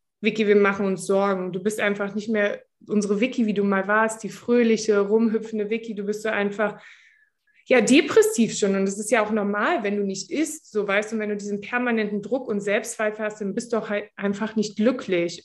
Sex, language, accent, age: female, German, German, 20-39